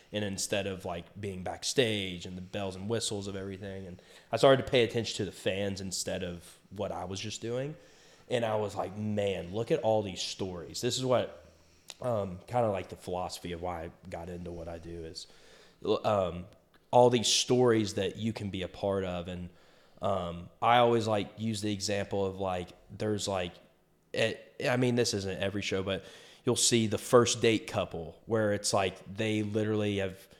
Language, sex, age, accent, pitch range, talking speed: English, male, 20-39, American, 95-110 Hz, 195 wpm